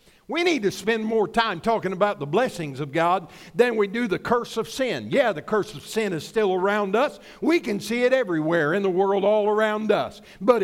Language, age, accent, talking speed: English, 60-79, American, 225 wpm